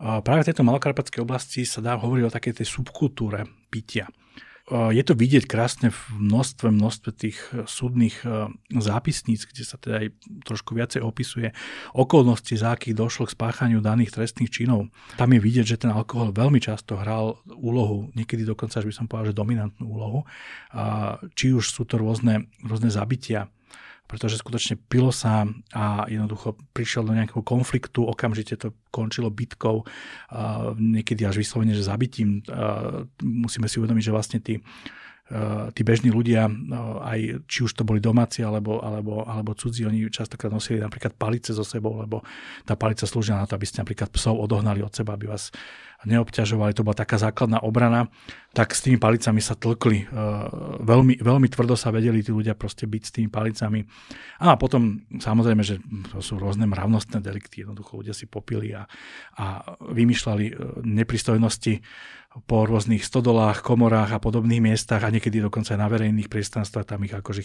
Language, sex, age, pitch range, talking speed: Slovak, male, 40-59, 110-120 Hz, 165 wpm